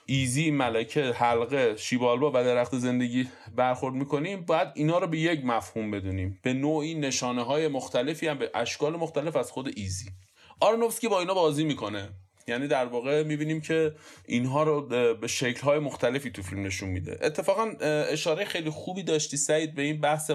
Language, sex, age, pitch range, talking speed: Persian, male, 30-49, 125-160 Hz, 170 wpm